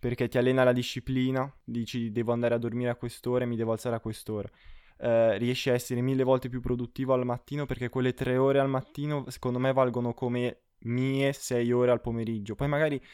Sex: male